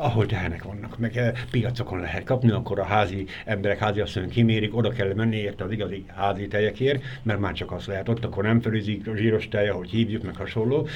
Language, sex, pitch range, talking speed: Hungarian, male, 100-125 Hz, 210 wpm